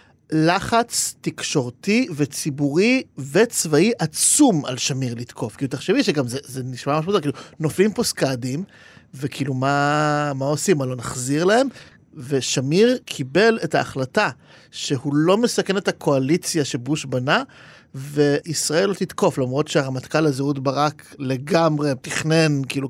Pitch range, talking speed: 140-190 Hz, 130 wpm